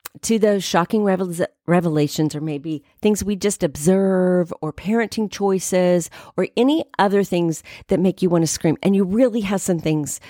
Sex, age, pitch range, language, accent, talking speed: female, 40-59, 170-235 Hz, English, American, 170 wpm